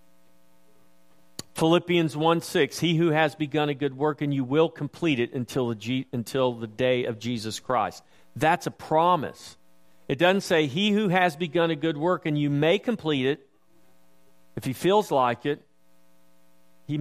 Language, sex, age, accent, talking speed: English, male, 50-69, American, 165 wpm